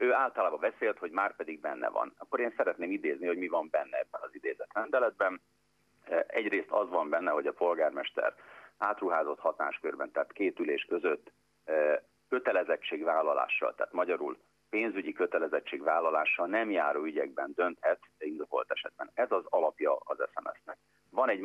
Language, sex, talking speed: Hungarian, male, 145 wpm